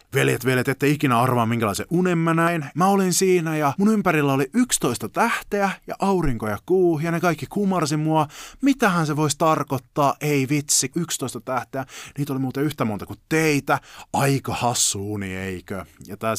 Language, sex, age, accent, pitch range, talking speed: Finnish, male, 30-49, native, 105-160 Hz, 175 wpm